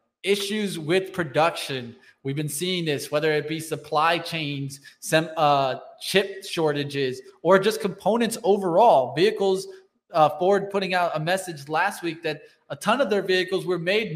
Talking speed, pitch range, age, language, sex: 155 wpm, 150-190 Hz, 20-39, English, male